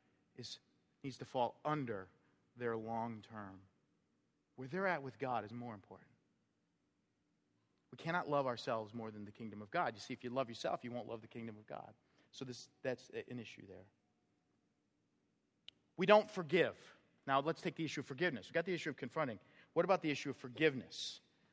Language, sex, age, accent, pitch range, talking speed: English, male, 40-59, American, 125-175 Hz, 185 wpm